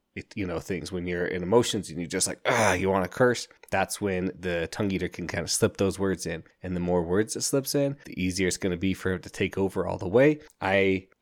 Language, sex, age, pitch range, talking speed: English, male, 20-39, 95-115 Hz, 275 wpm